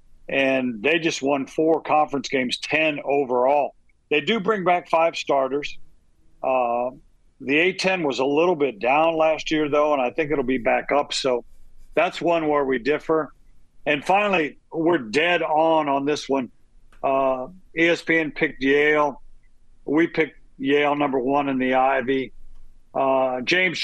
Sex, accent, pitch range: male, American, 130-155 Hz